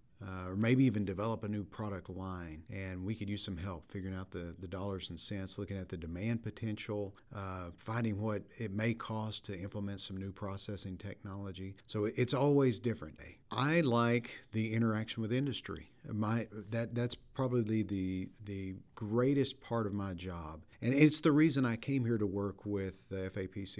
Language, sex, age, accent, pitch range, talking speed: English, male, 50-69, American, 95-120 Hz, 180 wpm